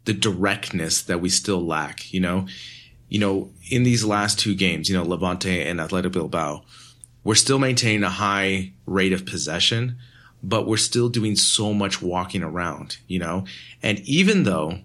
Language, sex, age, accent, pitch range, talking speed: English, male, 30-49, American, 90-110 Hz, 170 wpm